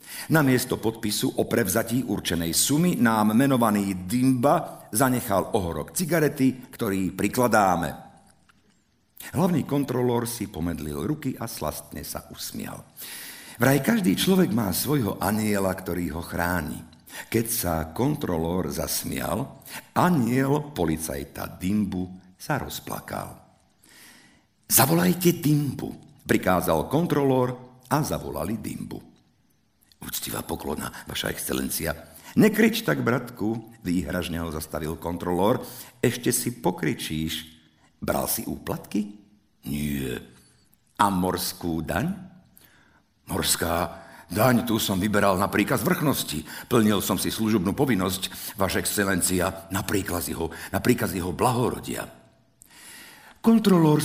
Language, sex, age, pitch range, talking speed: Slovak, male, 50-69, 85-130 Hz, 105 wpm